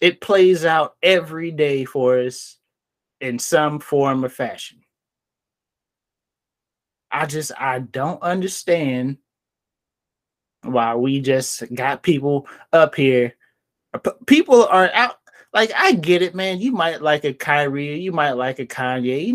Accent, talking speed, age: American, 135 wpm, 20-39